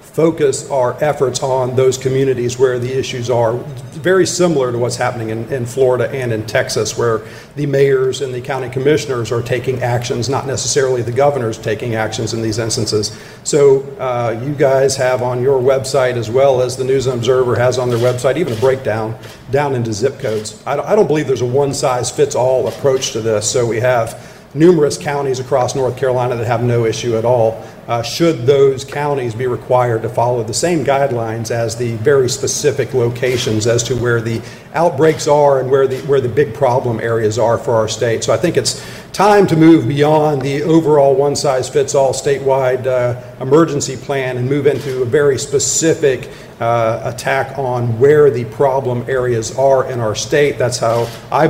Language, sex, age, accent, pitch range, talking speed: English, male, 40-59, American, 120-140 Hz, 190 wpm